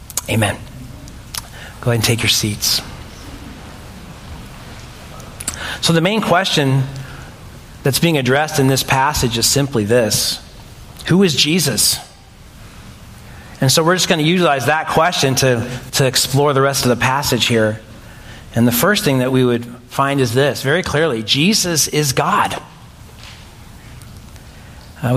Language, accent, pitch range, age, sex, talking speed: English, American, 120-170 Hz, 40-59, male, 135 wpm